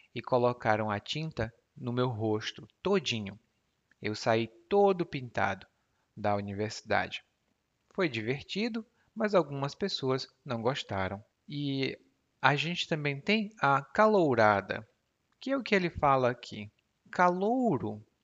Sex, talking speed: male, 120 wpm